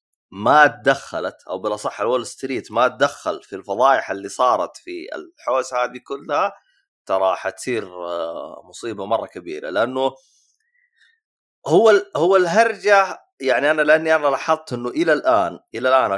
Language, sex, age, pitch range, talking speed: Arabic, male, 30-49, 110-155 Hz, 130 wpm